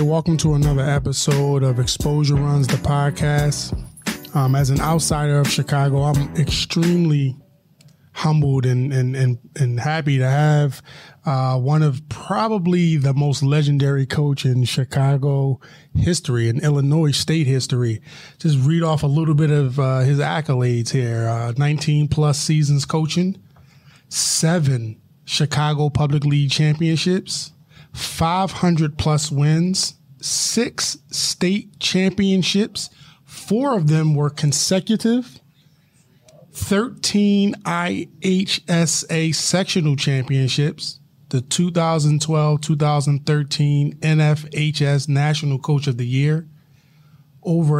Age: 20-39